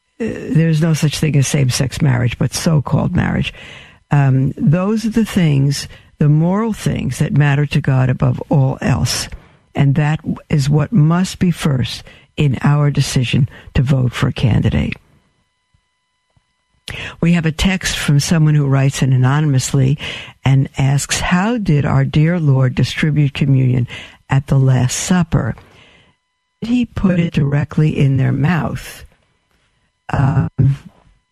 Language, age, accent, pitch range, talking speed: English, 60-79, American, 140-170 Hz, 140 wpm